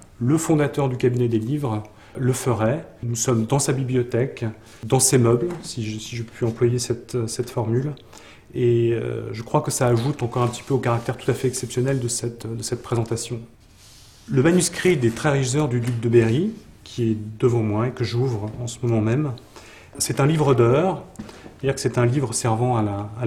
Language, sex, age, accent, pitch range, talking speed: French, male, 30-49, French, 115-135 Hz, 205 wpm